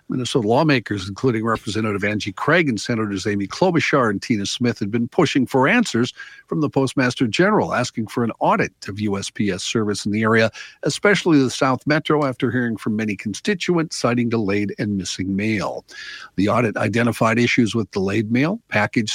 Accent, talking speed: American, 170 wpm